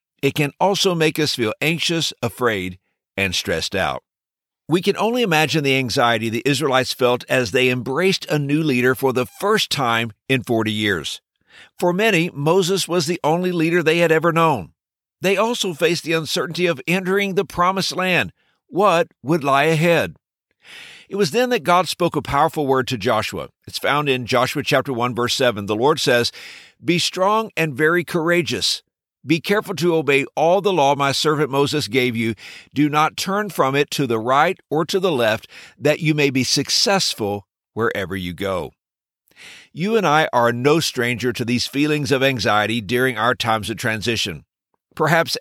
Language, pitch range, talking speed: English, 125-175 Hz, 175 wpm